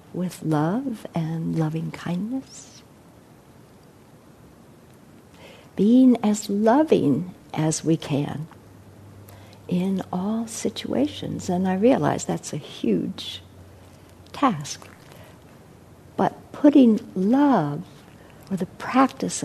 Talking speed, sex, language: 80 wpm, female, English